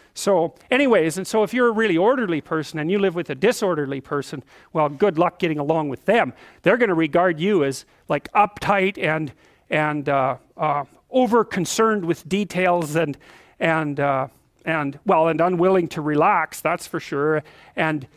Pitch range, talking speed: 160-200 Hz, 170 wpm